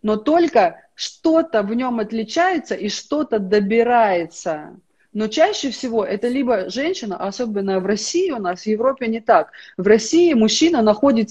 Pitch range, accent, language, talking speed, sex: 195-255 Hz, native, Russian, 150 wpm, female